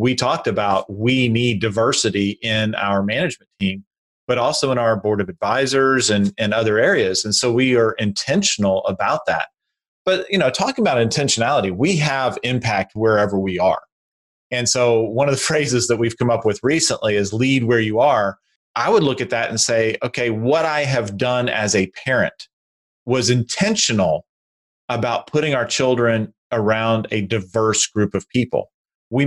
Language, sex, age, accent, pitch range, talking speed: English, male, 30-49, American, 110-130 Hz, 175 wpm